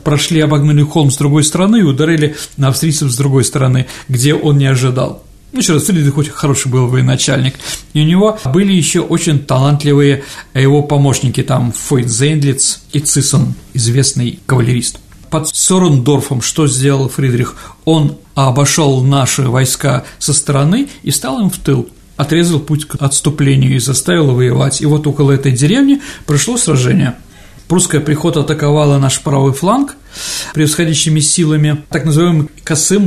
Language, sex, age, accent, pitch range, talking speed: Russian, male, 40-59, native, 135-160 Hz, 150 wpm